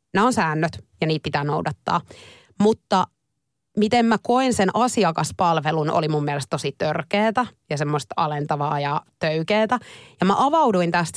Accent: native